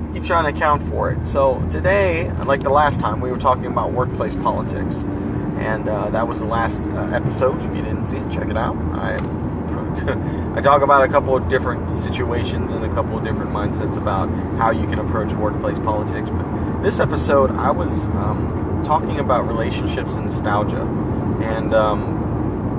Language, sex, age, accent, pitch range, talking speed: English, male, 30-49, American, 100-110 Hz, 180 wpm